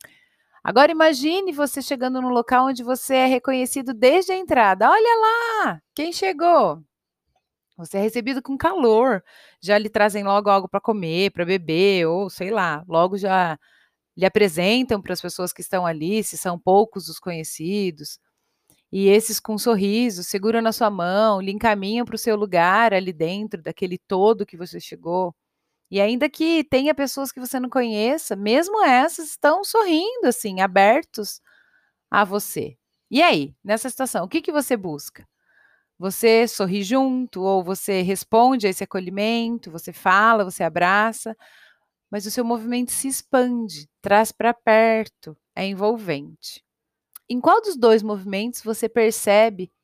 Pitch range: 190-255 Hz